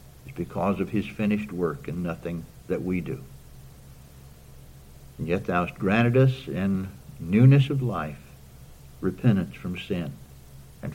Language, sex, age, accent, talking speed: English, male, 60-79, American, 130 wpm